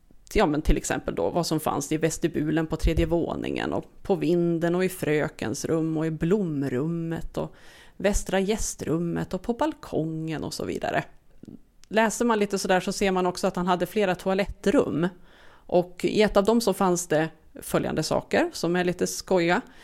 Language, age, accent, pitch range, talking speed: Swedish, 30-49, native, 160-210 Hz, 180 wpm